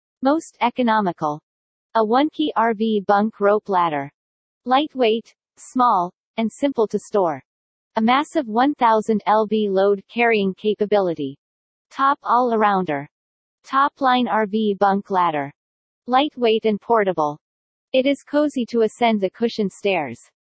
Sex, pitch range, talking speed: female, 190-245 Hz, 110 wpm